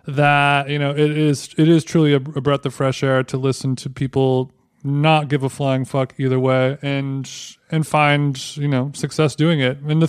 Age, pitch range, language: 20-39, 135-155 Hz, English